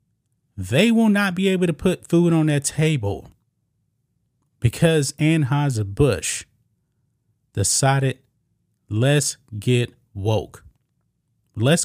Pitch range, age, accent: 120-150 Hz, 30-49, American